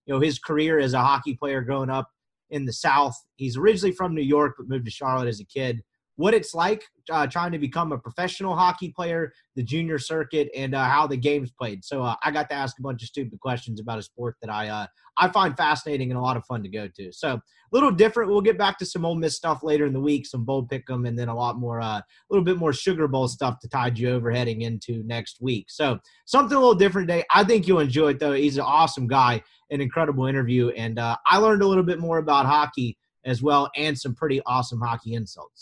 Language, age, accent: English, 30-49, American